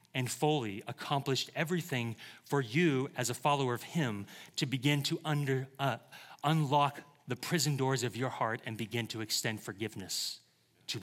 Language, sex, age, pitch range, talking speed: English, male, 30-49, 115-150 Hz, 160 wpm